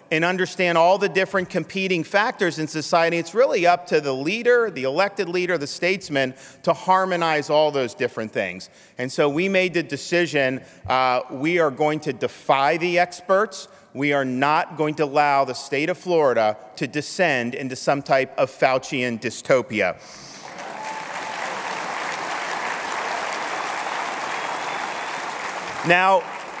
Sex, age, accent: male, 40-59, American